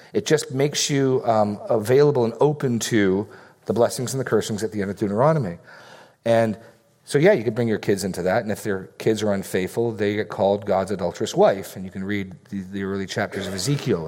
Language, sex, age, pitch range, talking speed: English, male, 40-59, 100-135 Hz, 215 wpm